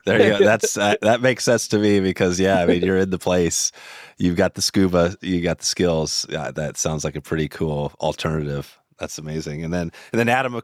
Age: 30-49